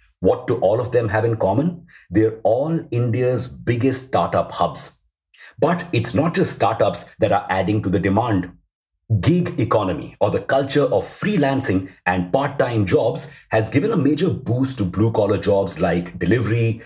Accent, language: Indian, English